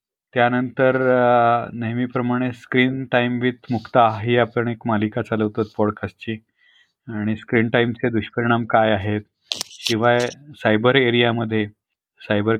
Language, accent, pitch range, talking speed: Marathi, native, 110-135 Hz, 110 wpm